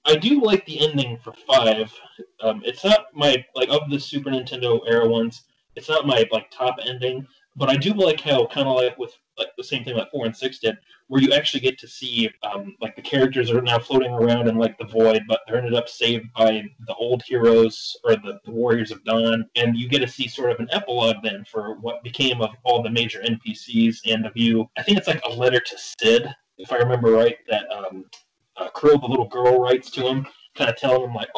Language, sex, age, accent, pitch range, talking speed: English, male, 20-39, American, 115-140 Hz, 235 wpm